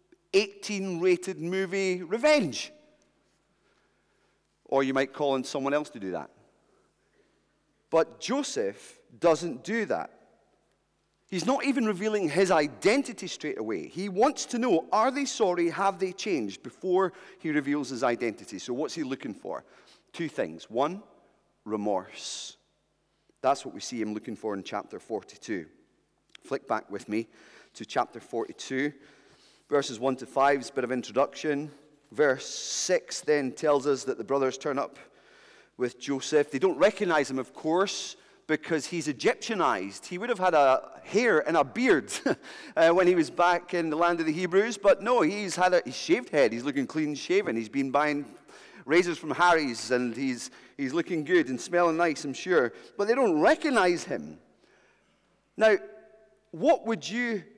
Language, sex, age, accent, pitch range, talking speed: English, male, 30-49, British, 145-220 Hz, 160 wpm